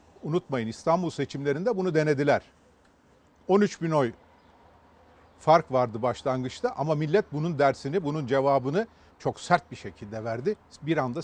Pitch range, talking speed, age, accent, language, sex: 130-185 Hz, 130 wpm, 40-59, native, Turkish, male